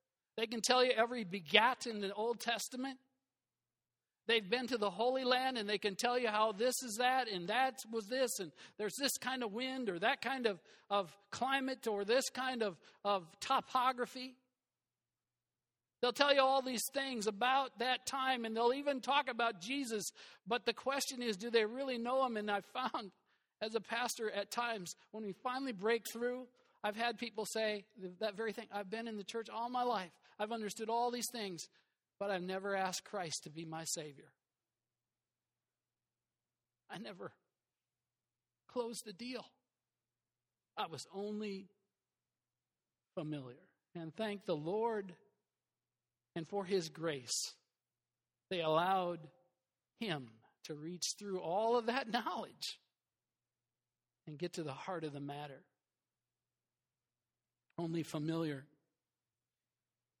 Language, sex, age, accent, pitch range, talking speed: English, male, 50-69, American, 170-245 Hz, 150 wpm